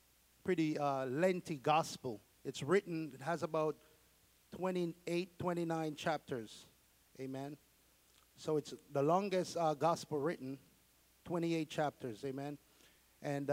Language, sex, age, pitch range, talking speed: English, male, 50-69, 150-195 Hz, 105 wpm